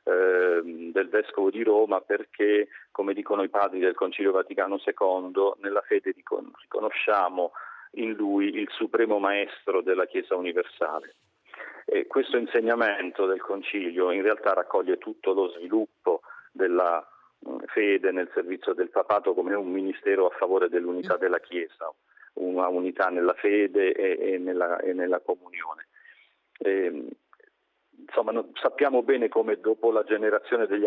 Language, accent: Italian, native